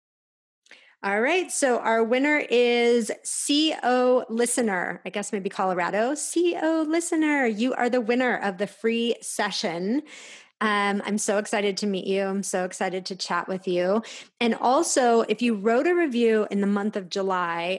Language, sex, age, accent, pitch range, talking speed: English, female, 30-49, American, 195-240 Hz, 160 wpm